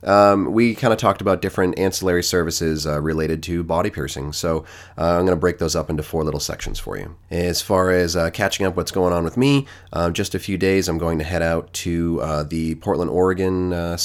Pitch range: 80-100 Hz